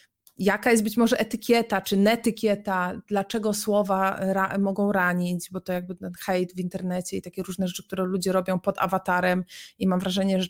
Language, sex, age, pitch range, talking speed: Polish, female, 30-49, 185-230 Hz, 175 wpm